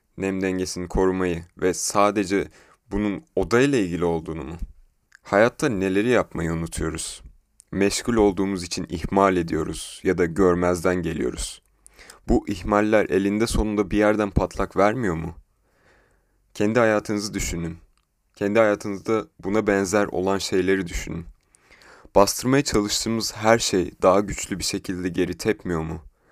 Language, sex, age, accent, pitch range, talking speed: Turkish, male, 30-49, native, 85-105 Hz, 120 wpm